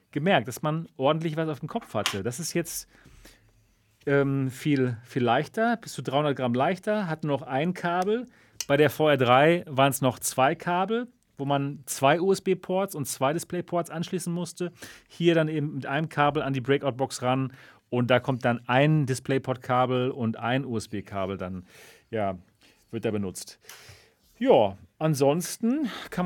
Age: 40-59